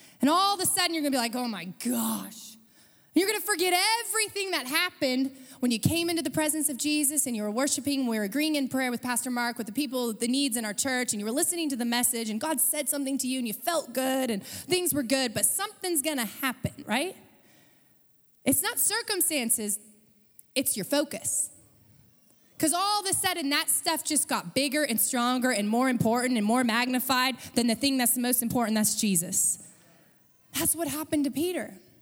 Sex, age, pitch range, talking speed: female, 20-39, 235-305 Hz, 210 wpm